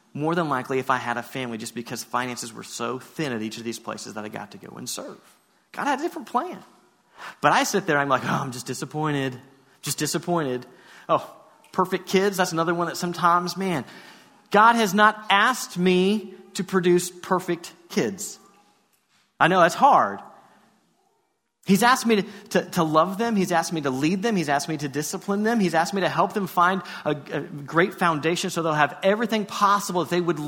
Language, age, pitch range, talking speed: English, 30-49, 165-210 Hz, 205 wpm